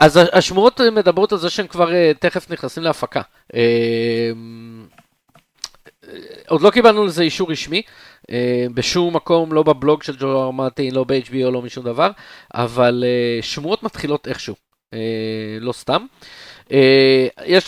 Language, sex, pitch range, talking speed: Hebrew, male, 120-155 Hz, 120 wpm